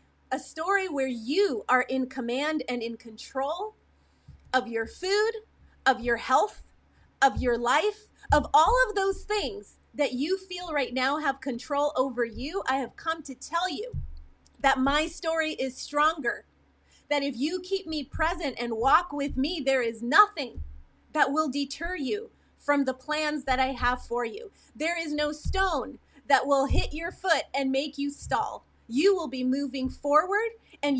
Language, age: English, 30-49